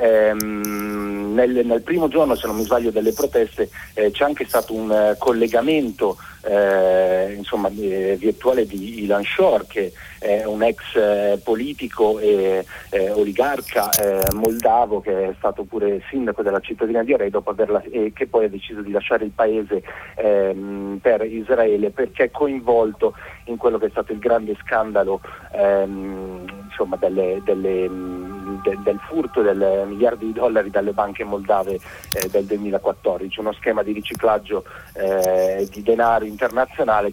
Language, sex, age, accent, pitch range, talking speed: Italian, male, 40-59, native, 100-125 Hz, 150 wpm